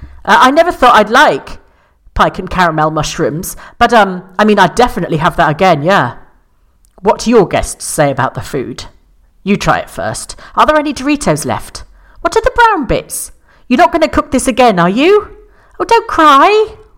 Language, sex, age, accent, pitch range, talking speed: English, female, 40-59, British, 165-255 Hz, 190 wpm